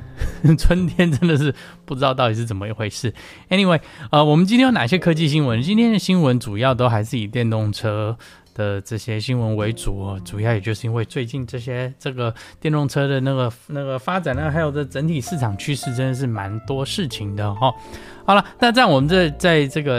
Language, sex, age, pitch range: Chinese, male, 20-39, 115-155 Hz